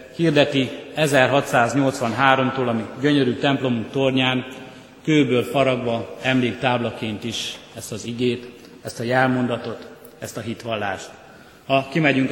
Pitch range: 120-140 Hz